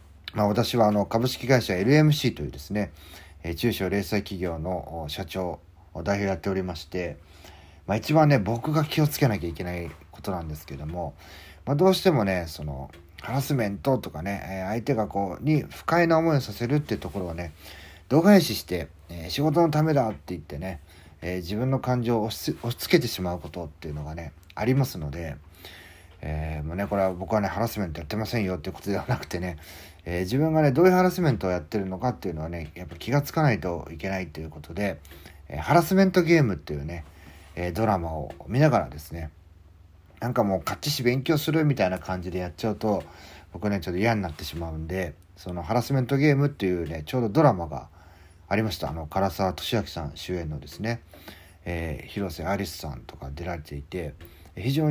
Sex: male